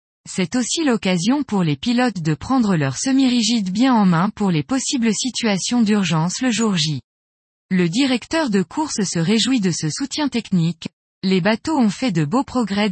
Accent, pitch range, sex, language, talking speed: French, 175-240 Hz, female, French, 175 wpm